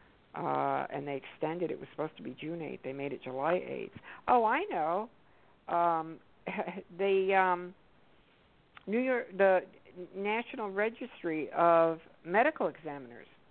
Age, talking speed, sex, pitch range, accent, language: 60-79, 135 wpm, female, 155-190 Hz, American, English